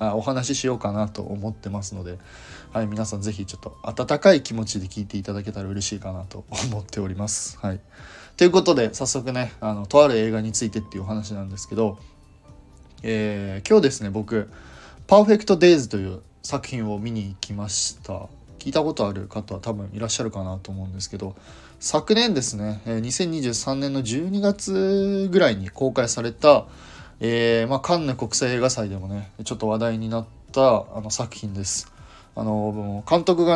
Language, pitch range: Japanese, 100-130 Hz